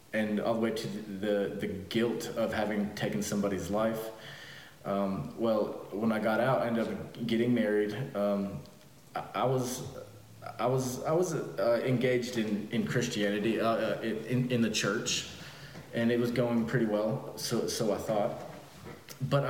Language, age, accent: English, 20-39, American